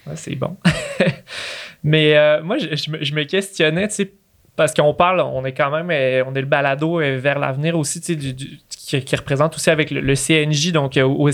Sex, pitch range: male, 145-165 Hz